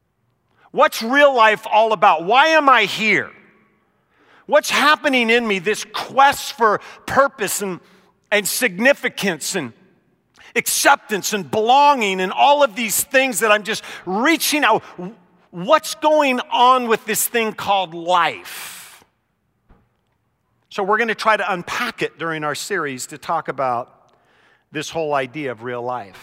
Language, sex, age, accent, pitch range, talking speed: English, male, 50-69, American, 180-230 Hz, 140 wpm